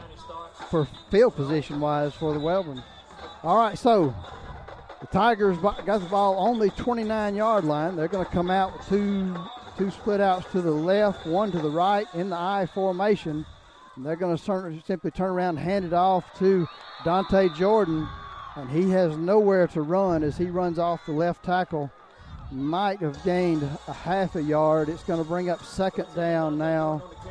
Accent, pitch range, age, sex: American, 155-190 Hz, 40-59, male